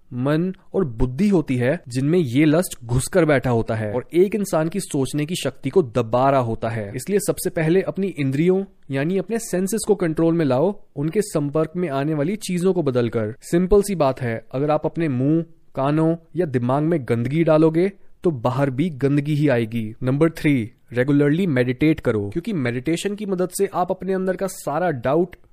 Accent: native